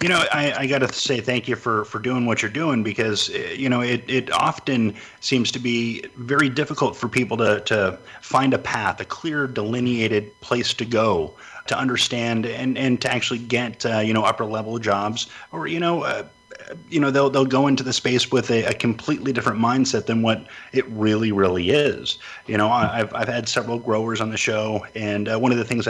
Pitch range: 110-130 Hz